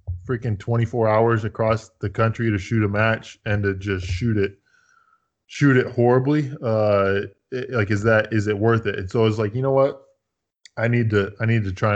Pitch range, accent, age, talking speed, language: 105-125 Hz, American, 20-39, 205 wpm, English